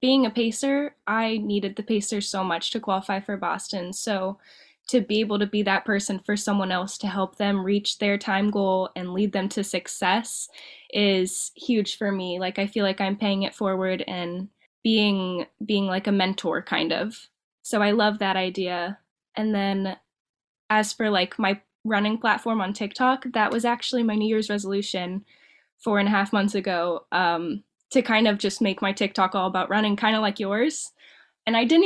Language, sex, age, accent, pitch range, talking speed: English, female, 10-29, American, 190-220 Hz, 190 wpm